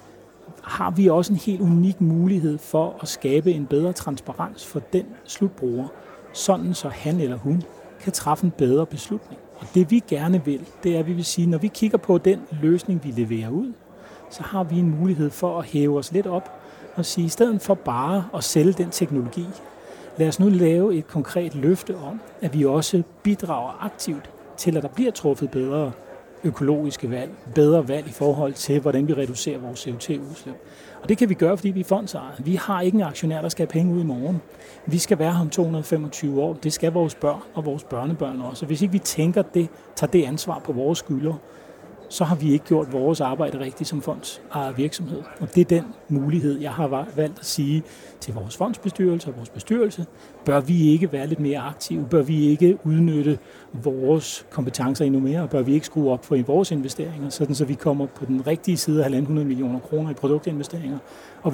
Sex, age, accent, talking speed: male, 30-49, native, 210 wpm